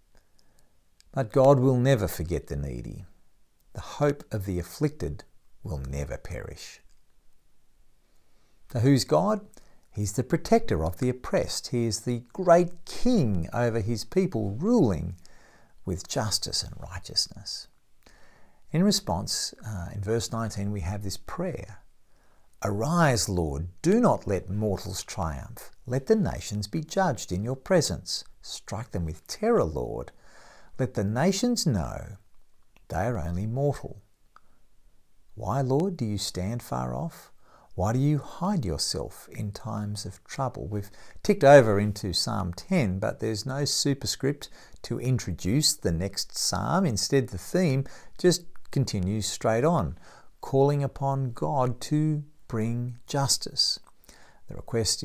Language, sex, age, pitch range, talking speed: English, male, 50-69, 95-140 Hz, 130 wpm